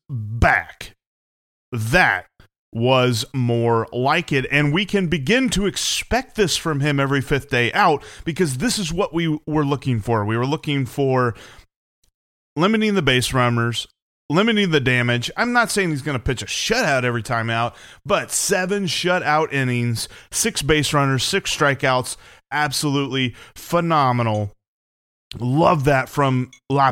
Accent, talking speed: American, 145 wpm